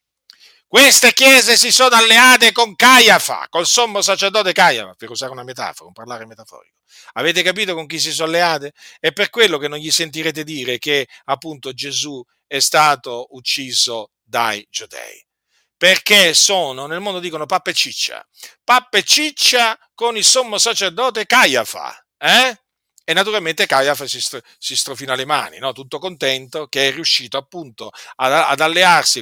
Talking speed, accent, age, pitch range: 145 wpm, native, 50-69, 135-205 Hz